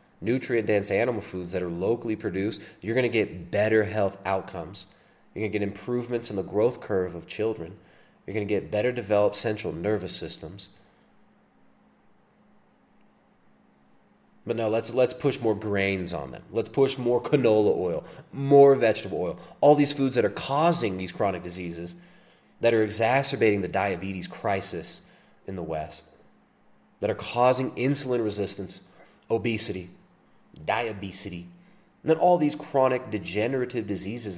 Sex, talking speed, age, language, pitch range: male, 145 wpm, 30-49, English, 95-125 Hz